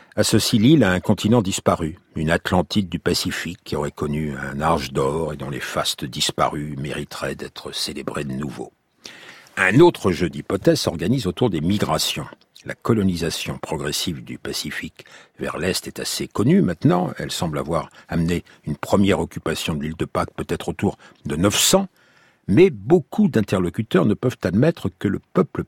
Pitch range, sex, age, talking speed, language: 85-110 Hz, male, 60-79, 165 wpm, French